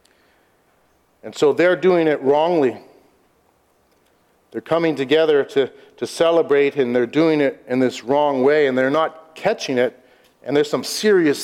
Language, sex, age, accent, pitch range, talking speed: English, male, 50-69, American, 135-185 Hz, 150 wpm